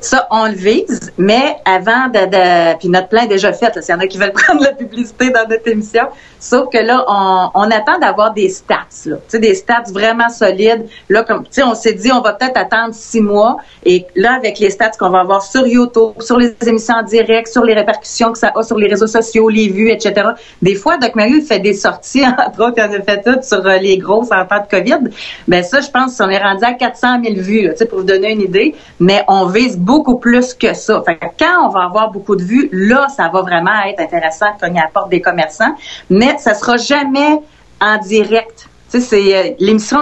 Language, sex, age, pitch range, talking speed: French, female, 40-59, 195-240 Hz, 235 wpm